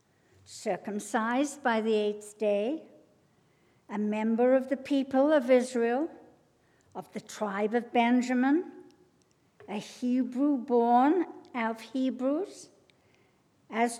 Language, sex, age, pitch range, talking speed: English, female, 60-79, 210-265 Hz, 100 wpm